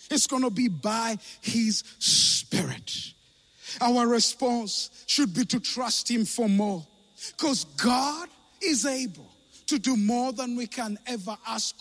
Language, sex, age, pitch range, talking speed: English, male, 50-69, 210-315 Hz, 140 wpm